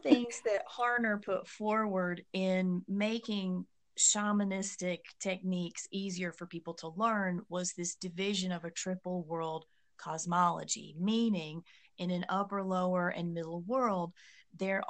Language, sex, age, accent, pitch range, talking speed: English, female, 30-49, American, 170-200 Hz, 125 wpm